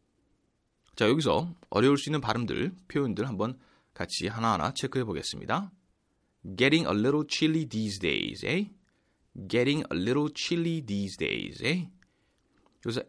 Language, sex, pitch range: Korean, male, 105-160 Hz